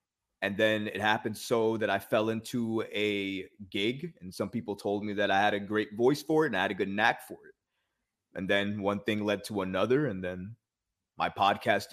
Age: 30-49